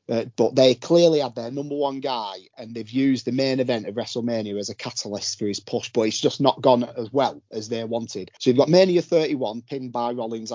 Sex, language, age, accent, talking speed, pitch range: male, English, 30-49, British, 235 wpm, 115-150 Hz